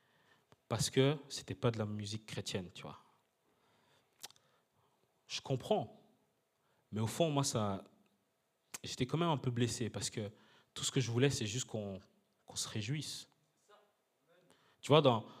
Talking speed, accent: 155 wpm, French